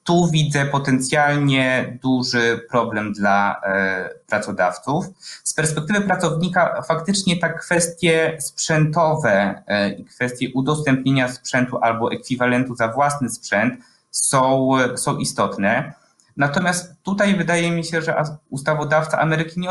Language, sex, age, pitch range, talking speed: Polish, male, 20-39, 120-155 Hz, 105 wpm